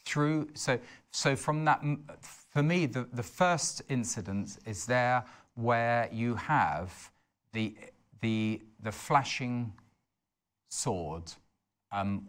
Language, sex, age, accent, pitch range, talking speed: English, male, 40-59, British, 100-125 Hz, 105 wpm